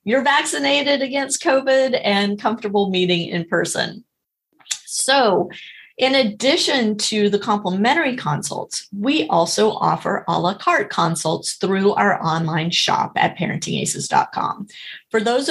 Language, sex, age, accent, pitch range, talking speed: English, female, 30-49, American, 180-240 Hz, 120 wpm